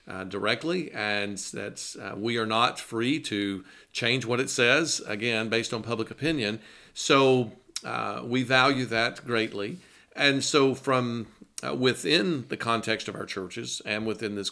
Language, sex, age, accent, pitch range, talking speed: English, male, 50-69, American, 105-130 Hz, 155 wpm